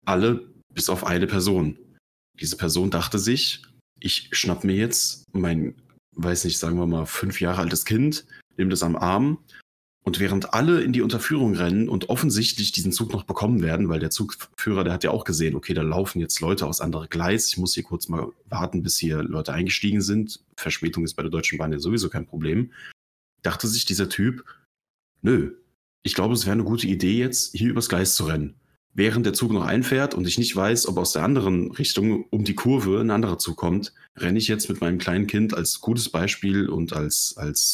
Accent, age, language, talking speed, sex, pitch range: German, 30-49, German, 205 wpm, male, 85-110 Hz